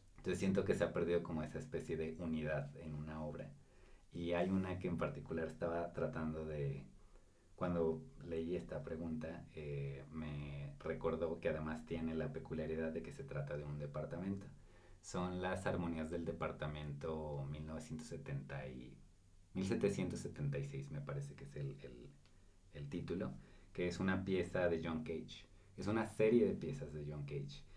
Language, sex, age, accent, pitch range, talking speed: Spanish, male, 40-59, Mexican, 75-90 Hz, 160 wpm